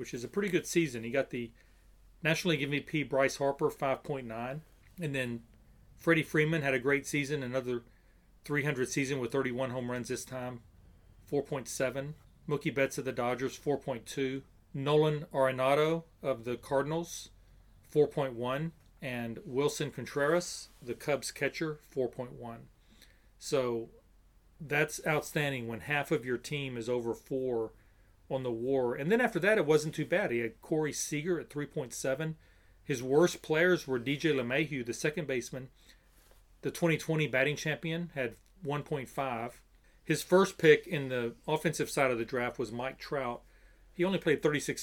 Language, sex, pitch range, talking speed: English, male, 125-155 Hz, 150 wpm